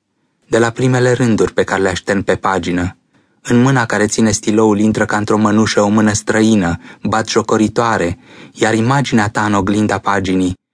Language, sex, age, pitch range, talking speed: Romanian, male, 20-39, 95-120 Hz, 170 wpm